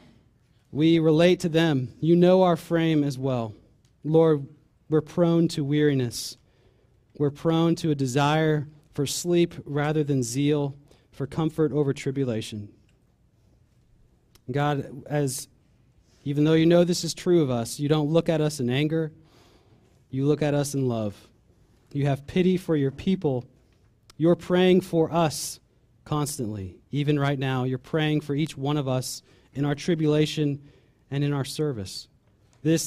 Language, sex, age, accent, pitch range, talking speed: English, male, 30-49, American, 125-160 Hz, 150 wpm